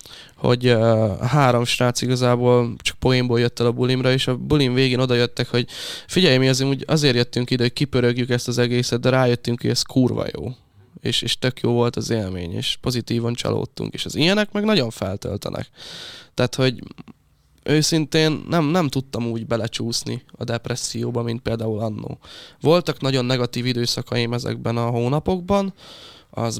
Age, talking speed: 10-29, 160 wpm